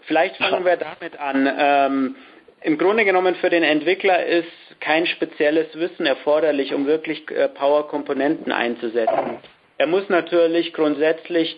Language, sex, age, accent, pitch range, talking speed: English, male, 50-69, German, 140-170 Hz, 130 wpm